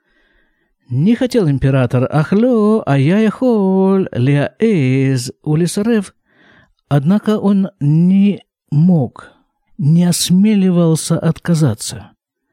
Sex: male